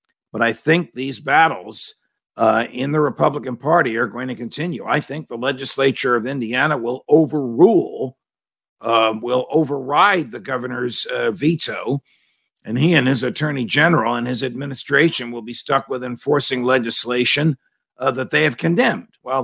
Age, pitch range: 50-69, 115-140 Hz